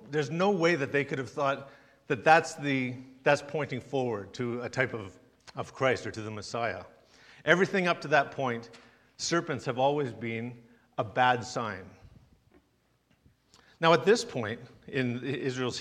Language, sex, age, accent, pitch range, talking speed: English, male, 50-69, American, 115-150 Hz, 160 wpm